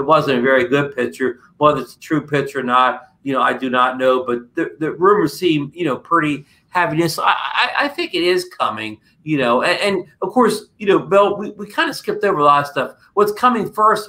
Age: 50-69